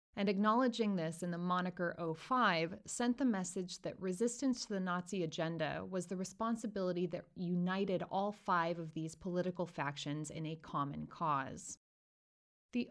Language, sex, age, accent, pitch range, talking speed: English, female, 30-49, American, 160-210 Hz, 150 wpm